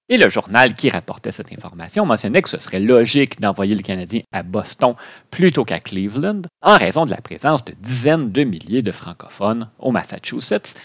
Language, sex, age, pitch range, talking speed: French, male, 40-59, 105-150 Hz, 185 wpm